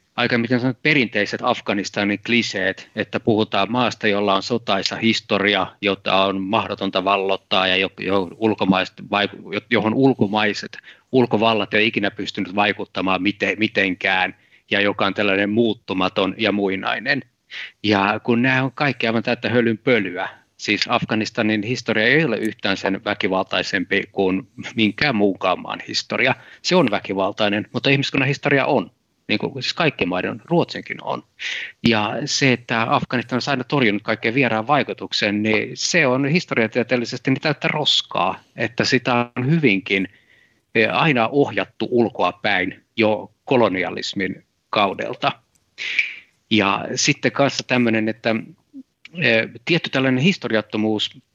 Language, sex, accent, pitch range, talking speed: Finnish, male, native, 105-130 Hz, 120 wpm